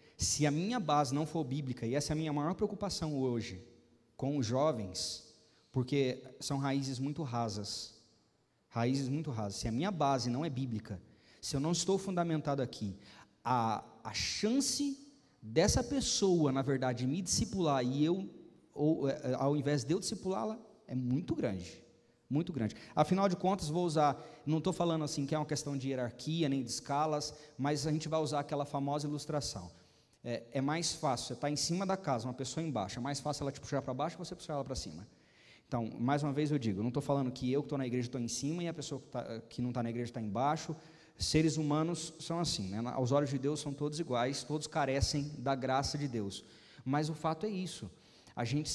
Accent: Brazilian